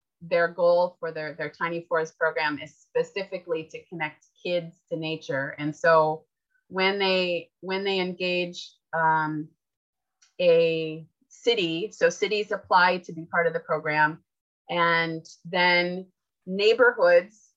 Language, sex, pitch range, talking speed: English, female, 160-190 Hz, 125 wpm